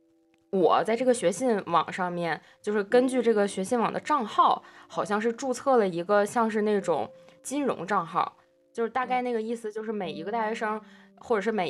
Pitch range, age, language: 180-230 Hz, 20-39, Chinese